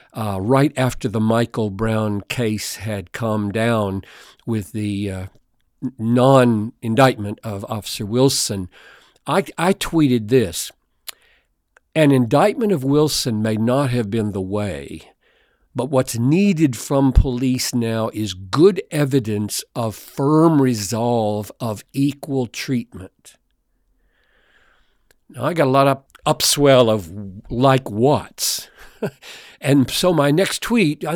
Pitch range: 110-145 Hz